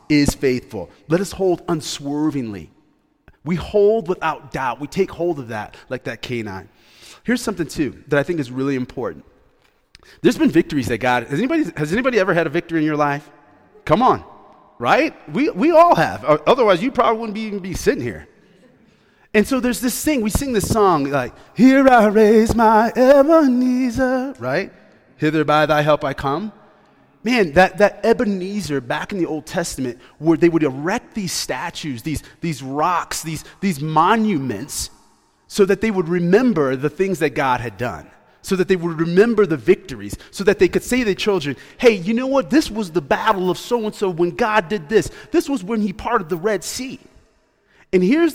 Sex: male